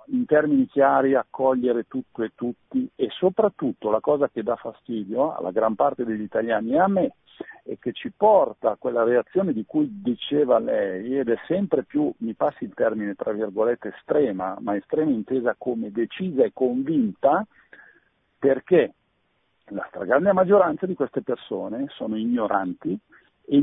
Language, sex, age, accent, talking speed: Italian, male, 50-69, native, 155 wpm